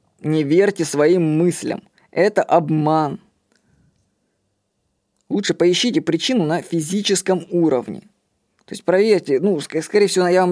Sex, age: female, 20-39